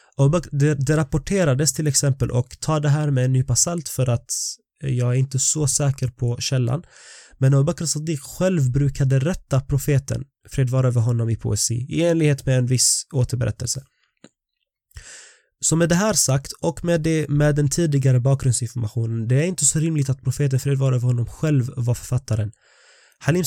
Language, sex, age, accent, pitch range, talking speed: Swedish, male, 20-39, native, 125-150 Hz, 165 wpm